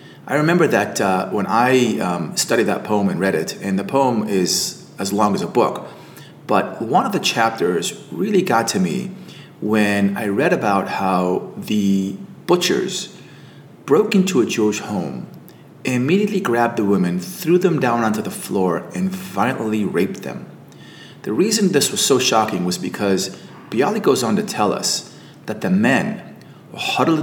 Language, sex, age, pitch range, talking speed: English, male, 30-49, 110-185 Hz, 165 wpm